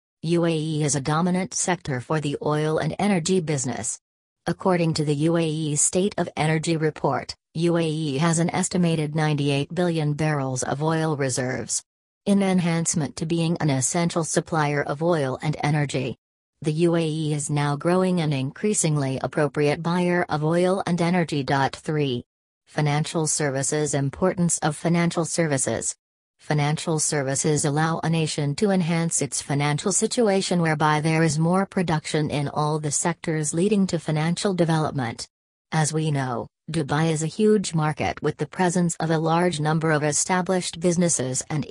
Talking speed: 145 wpm